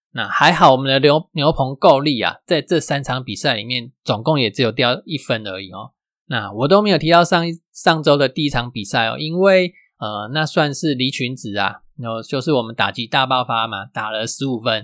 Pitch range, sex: 120-155 Hz, male